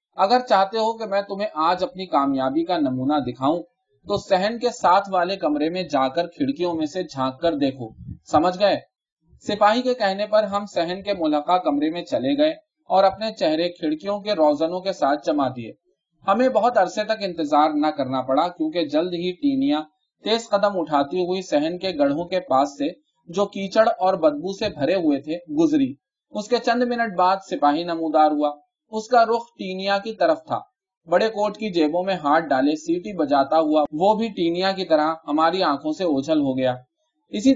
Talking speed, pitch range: 190 wpm, 155-220 Hz